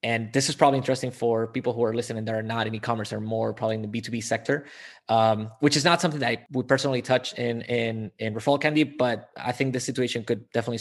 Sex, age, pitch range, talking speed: male, 20-39, 115-140 Hz, 245 wpm